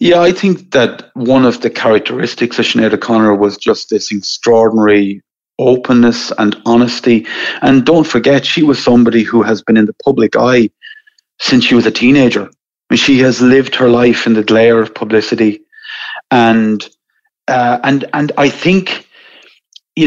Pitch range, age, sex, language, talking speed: 110-140 Hz, 30-49, male, English, 160 wpm